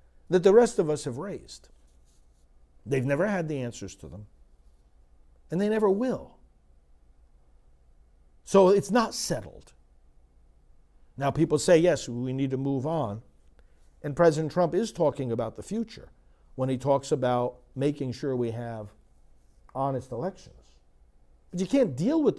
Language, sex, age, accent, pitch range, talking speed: English, male, 50-69, American, 95-160 Hz, 145 wpm